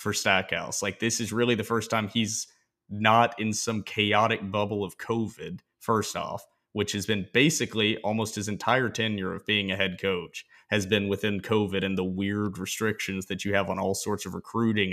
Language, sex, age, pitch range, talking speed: English, male, 30-49, 95-110 Hz, 195 wpm